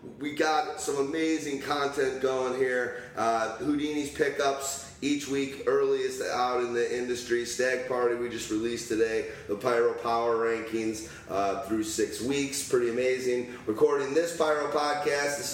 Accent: American